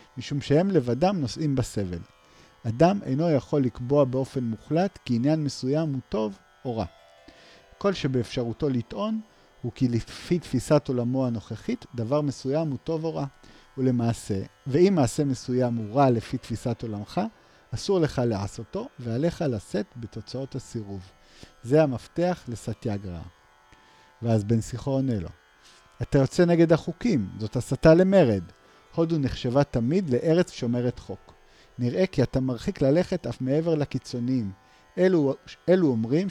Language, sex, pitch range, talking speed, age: Hebrew, male, 115-150 Hz, 130 wpm, 40-59